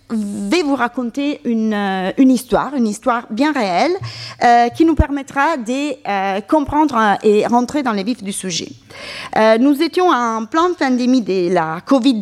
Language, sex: French, female